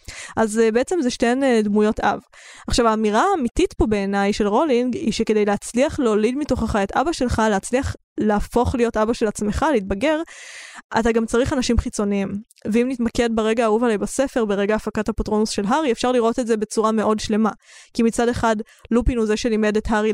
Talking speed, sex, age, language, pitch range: 180 wpm, female, 10-29, Hebrew, 215-245 Hz